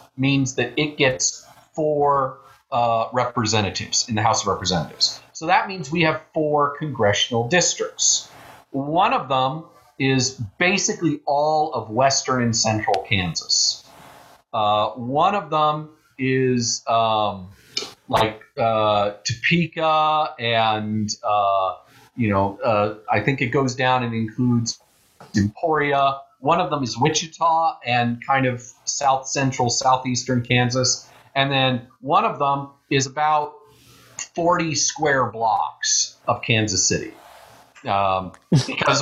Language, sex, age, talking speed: English, male, 40-59, 125 wpm